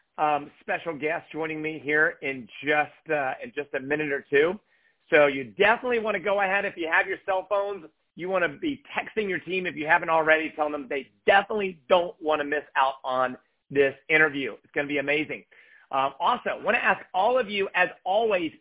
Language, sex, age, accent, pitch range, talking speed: English, male, 50-69, American, 150-205 Hz, 215 wpm